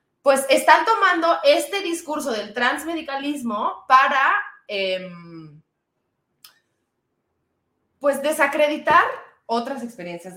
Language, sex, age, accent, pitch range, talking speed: Spanish, female, 20-39, Mexican, 185-280 Hz, 75 wpm